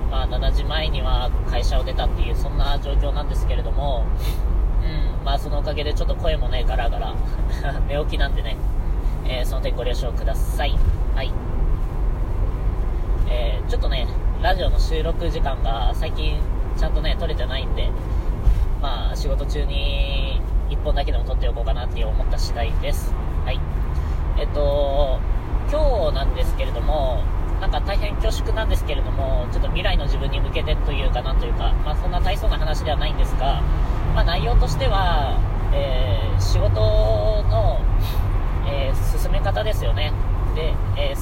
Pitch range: 75-100 Hz